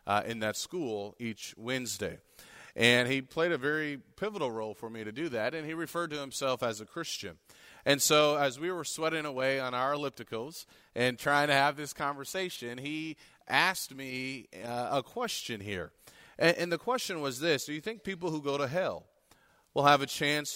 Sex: male